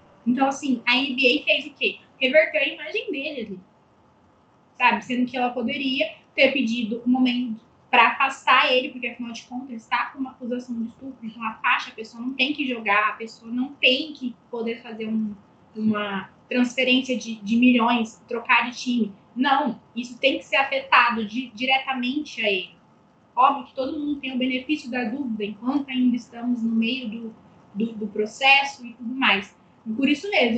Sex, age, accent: female, 10-29, Brazilian